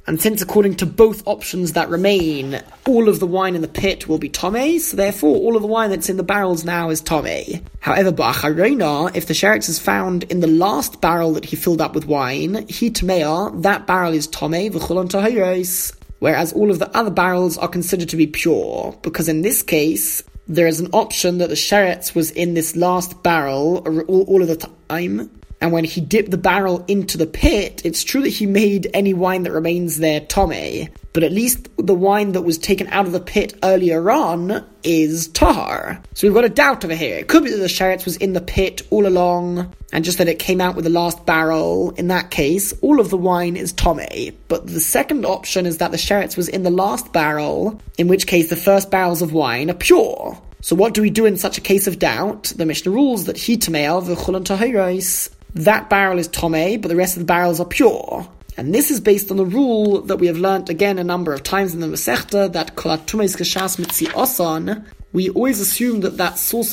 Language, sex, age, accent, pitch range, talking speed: English, male, 20-39, British, 165-200 Hz, 215 wpm